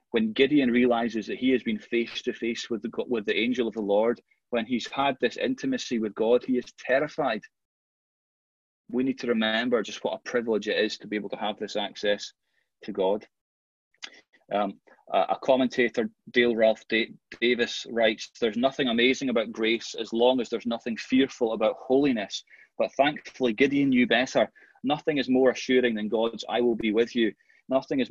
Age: 30-49